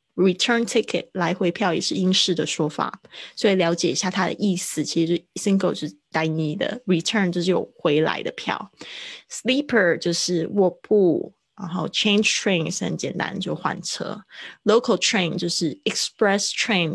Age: 20-39